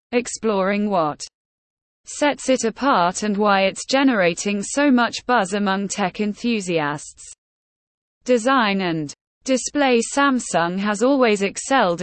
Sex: female